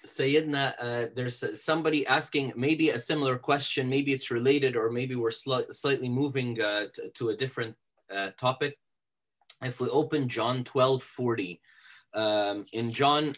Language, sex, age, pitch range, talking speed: English, male, 30-49, 120-145 Hz, 155 wpm